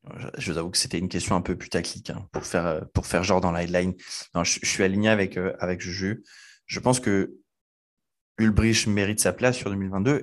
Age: 20-39